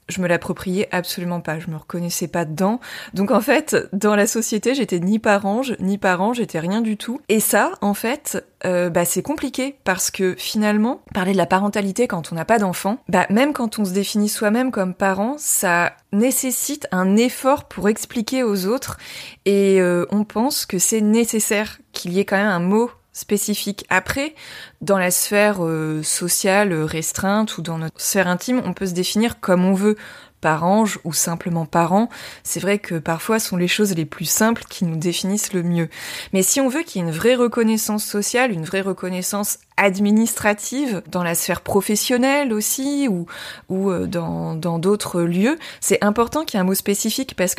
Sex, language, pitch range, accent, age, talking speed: female, French, 180-225 Hz, French, 20-39, 195 wpm